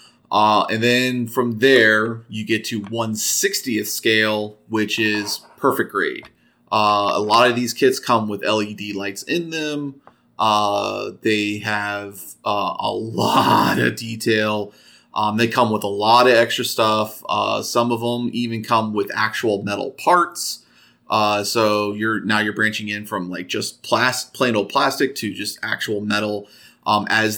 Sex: male